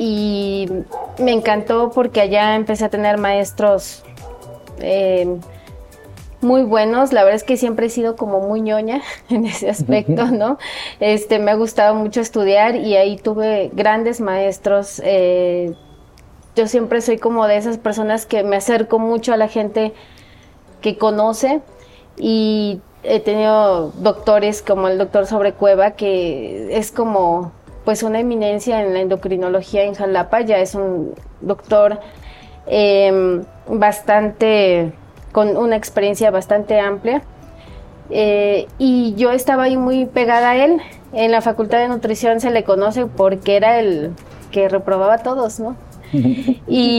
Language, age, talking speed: Spanish, 20-39, 140 wpm